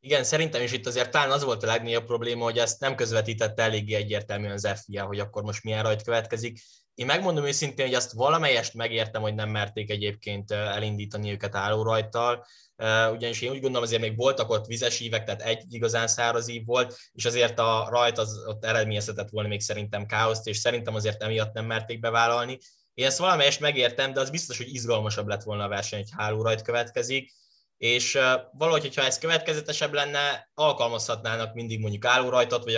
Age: 10-29